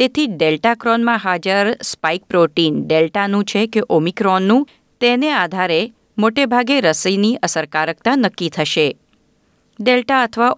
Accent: native